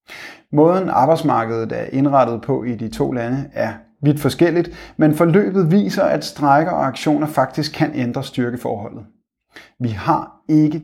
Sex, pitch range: male, 120-155 Hz